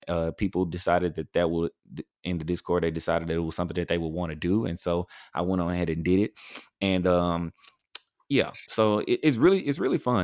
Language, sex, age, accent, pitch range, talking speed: English, male, 20-39, American, 90-115 Hz, 235 wpm